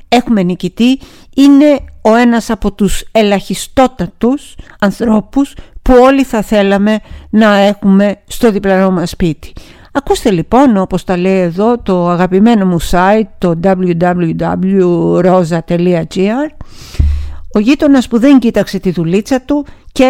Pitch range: 185-255 Hz